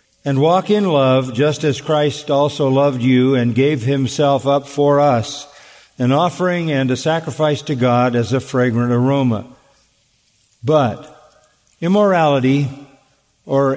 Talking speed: 130 wpm